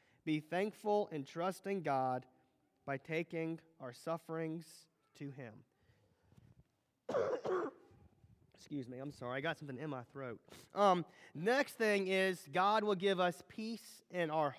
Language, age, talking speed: English, 30-49, 135 wpm